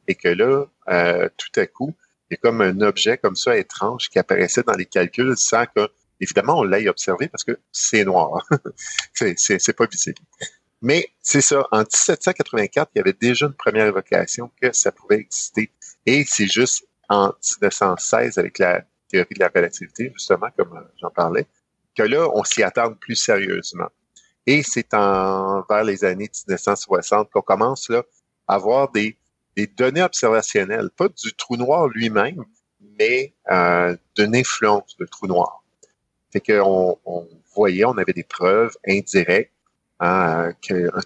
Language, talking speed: French, 165 wpm